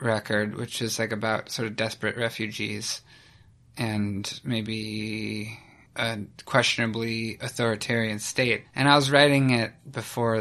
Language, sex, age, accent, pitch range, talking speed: English, male, 20-39, American, 110-140 Hz, 120 wpm